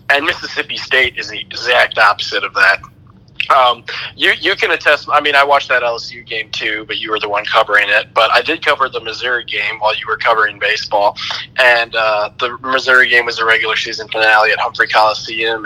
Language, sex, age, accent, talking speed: English, male, 20-39, American, 205 wpm